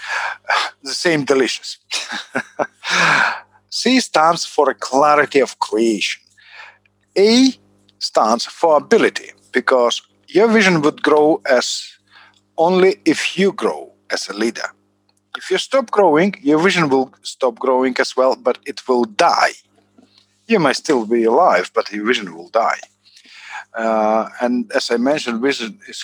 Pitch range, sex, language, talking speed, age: 110-175 Hz, male, English, 135 wpm, 50-69